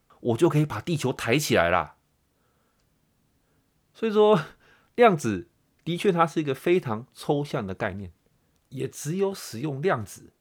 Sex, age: male, 30-49